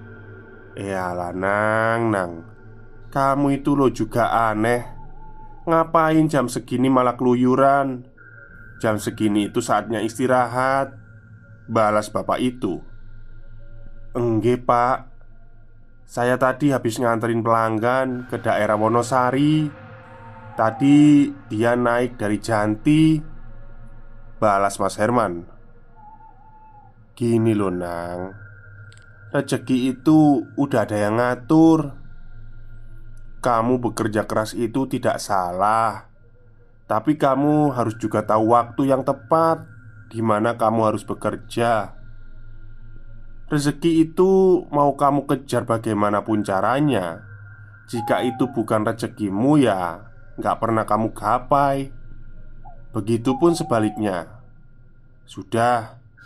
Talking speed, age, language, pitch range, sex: 90 wpm, 20-39, Indonesian, 110-130 Hz, male